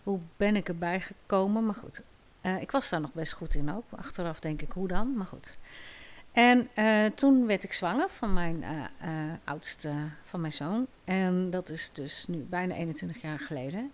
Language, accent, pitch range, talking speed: Dutch, Dutch, 165-225 Hz, 200 wpm